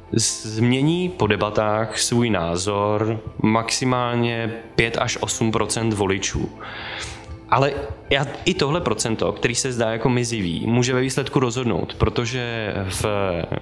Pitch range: 105-120 Hz